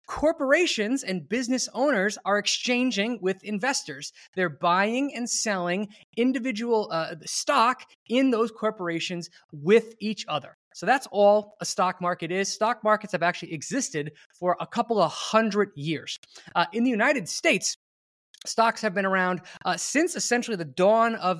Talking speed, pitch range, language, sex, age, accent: 150 wpm, 175-235 Hz, English, male, 20-39, American